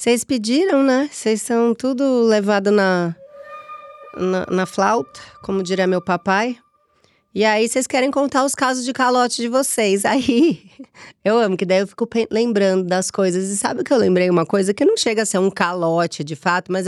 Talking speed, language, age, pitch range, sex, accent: 185 wpm, Portuguese, 30-49, 185-240 Hz, female, Brazilian